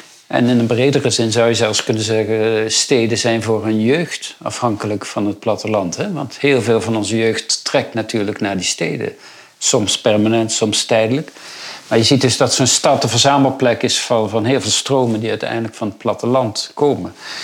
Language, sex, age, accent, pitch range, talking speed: Dutch, male, 50-69, Dutch, 110-125 Hz, 195 wpm